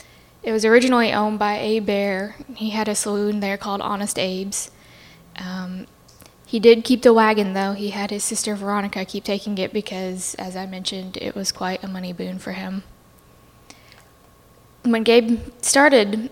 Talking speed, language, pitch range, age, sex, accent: 165 wpm, English, 195-220 Hz, 10-29, female, American